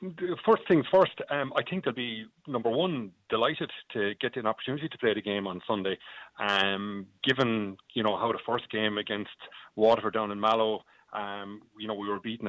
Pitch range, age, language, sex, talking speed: 105-135 Hz, 30-49, English, male, 190 wpm